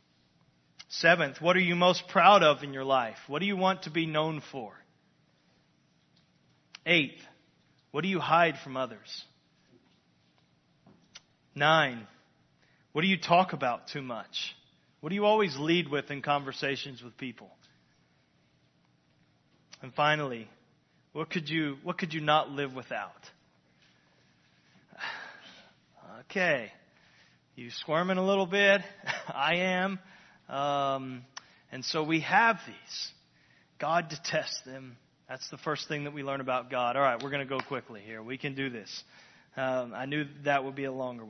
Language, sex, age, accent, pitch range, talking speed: English, male, 30-49, American, 135-180 Hz, 145 wpm